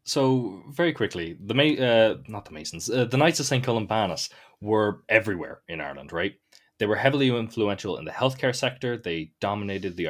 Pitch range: 100-130 Hz